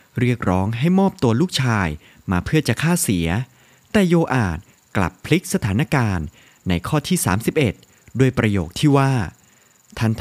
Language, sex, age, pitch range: Thai, male, 30-49, 95-145 Hz